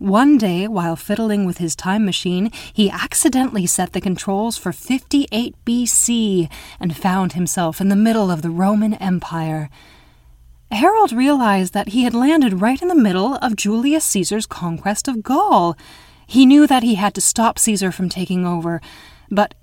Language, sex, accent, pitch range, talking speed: English, female, American, 175-230 Hz, 165 wpm